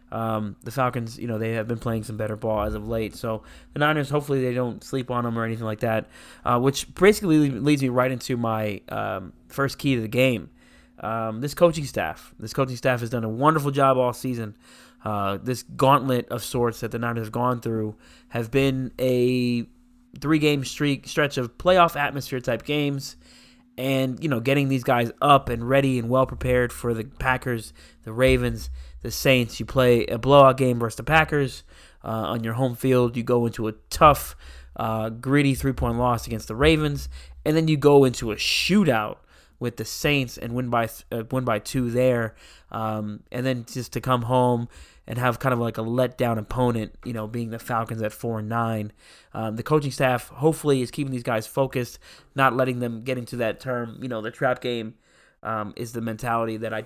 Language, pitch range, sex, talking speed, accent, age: English, 110-135 Hz, male, 200 wpm, American, 20-39